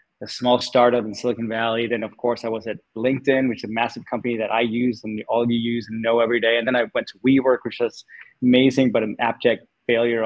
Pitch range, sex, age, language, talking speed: 115-135 Hz, male, 20-39, English, 245 wpm